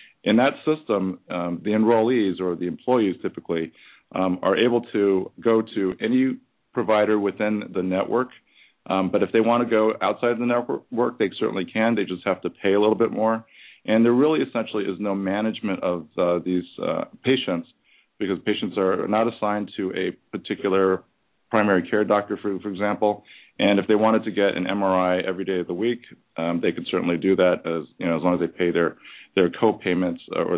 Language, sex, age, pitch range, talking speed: English, male, 40-59, 90-110 Hz, 195 wpm